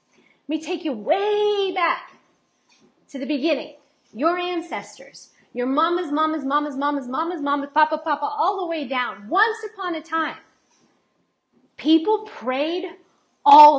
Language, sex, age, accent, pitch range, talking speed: English, female, 40-59, American, 290-355 Hz, 130 wpm